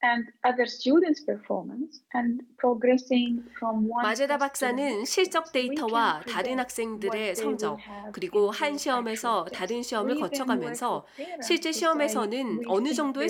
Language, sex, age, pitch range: Korean, female, 30-49, 210-280 Hz